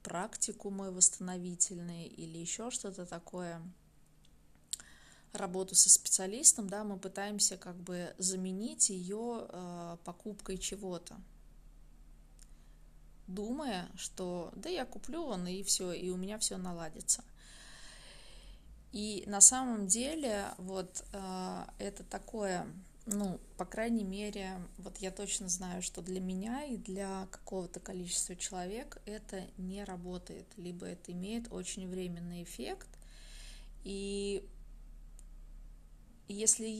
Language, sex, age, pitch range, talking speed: Russian, female, 20-39, 180-205 Hz, 110 wpm